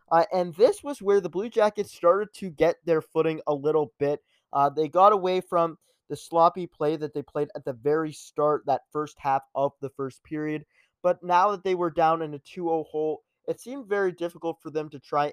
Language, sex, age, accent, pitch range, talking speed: English, male, 20-39, American, 145-175 Hz, 220 wpm